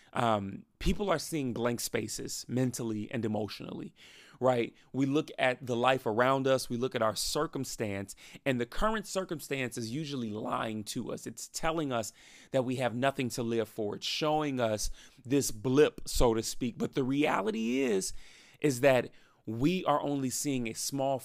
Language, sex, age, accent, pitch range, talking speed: English, male, 30-49, American, 125-170 Hz, 170 wpm